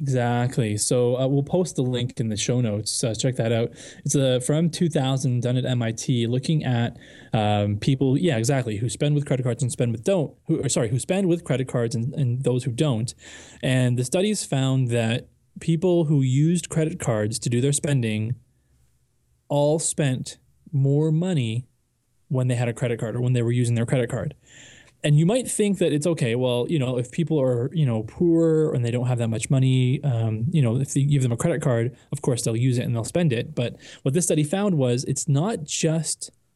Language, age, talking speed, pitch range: English, 20-39, 215 wpm, 120-150 Hz